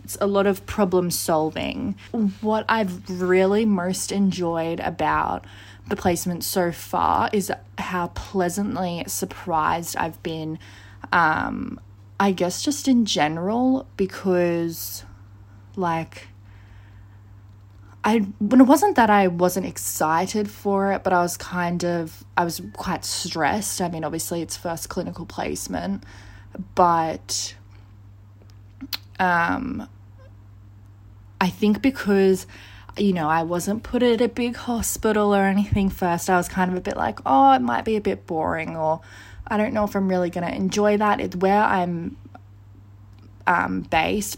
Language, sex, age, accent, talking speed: English, female, 20-39, Australian, 140 wpm